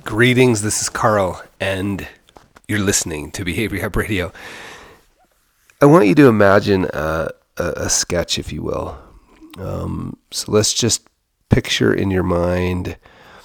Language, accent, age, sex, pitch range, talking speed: English, American, 30-49, male, 90-110 Hz, 140 wpm